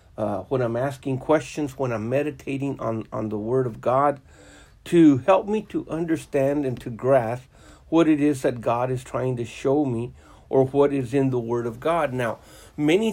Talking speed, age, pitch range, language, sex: 190 wpm, 60-79, 115-150 Hz, English, male